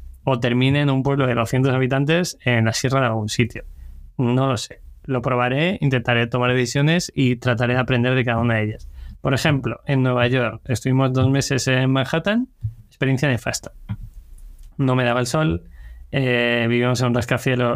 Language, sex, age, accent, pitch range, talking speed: Spanish, male, 20-39, Spanish, 115-135 Hz, 180 wpm